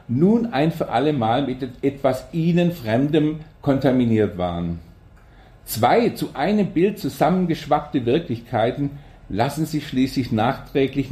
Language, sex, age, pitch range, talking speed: German, male, 50-69, 115-150 Hz, 110 wpm